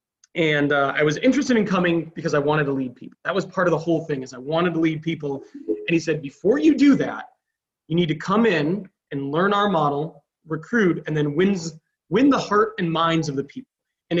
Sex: male